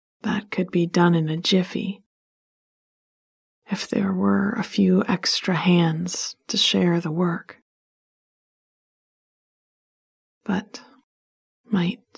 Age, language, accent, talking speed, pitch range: 30-49, English, American, 100 wpm, 170-200 Hz